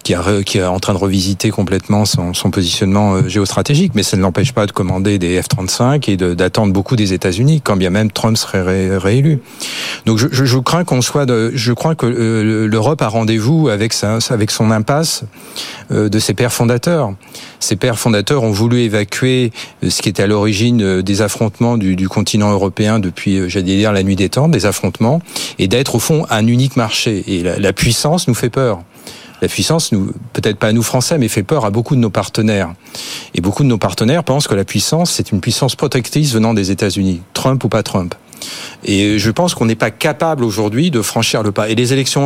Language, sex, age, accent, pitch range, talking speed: French, male, 40-59, French, 100-130 Hz, 210 wpm